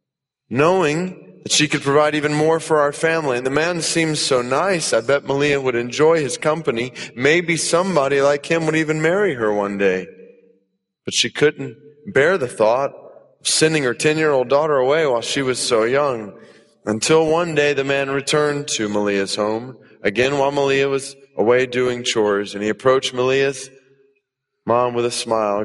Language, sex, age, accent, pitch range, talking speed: English, male, 30-49, American, 115-150 Hz, 175 wpm